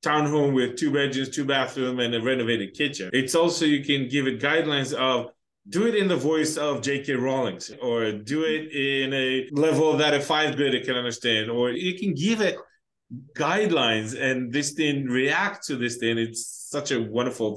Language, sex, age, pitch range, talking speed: English, male, 20-39, 130-170 Hz, 185 wpm